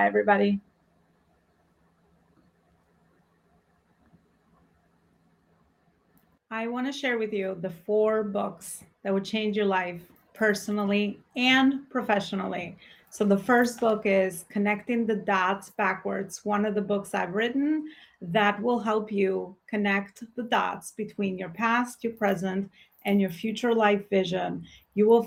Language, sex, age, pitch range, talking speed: English, female, 30-49, 195-225 Hz, 125 wpm